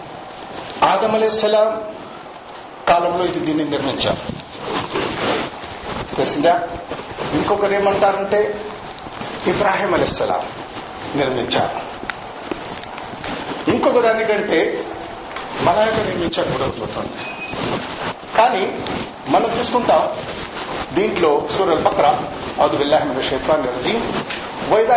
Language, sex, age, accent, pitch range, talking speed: Telugu, male, 50-69, native, 180-280 Hz, 65 wpm